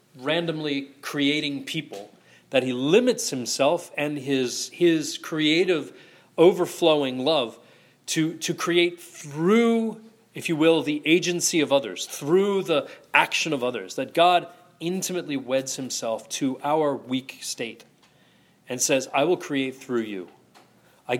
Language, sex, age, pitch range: English, male, 30-49, 130-170 Hz